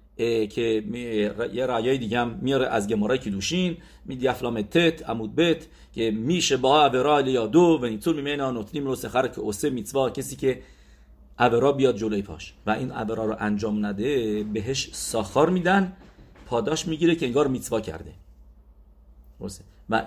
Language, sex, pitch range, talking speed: English, male, 95-135 Hz, 140 wpm